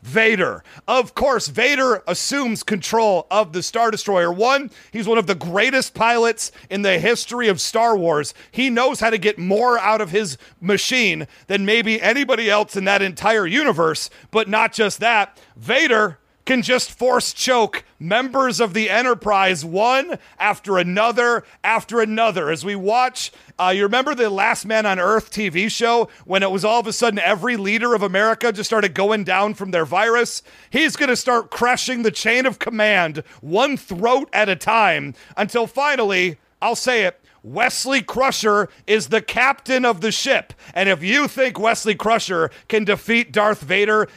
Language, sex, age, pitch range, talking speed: English, male, 40-59, 195-235 Hz, 175 wpm